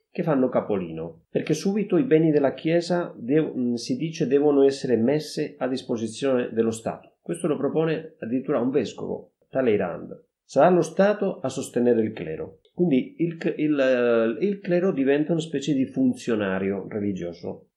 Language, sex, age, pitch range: Italian, male, 40-59, 110-160 Hz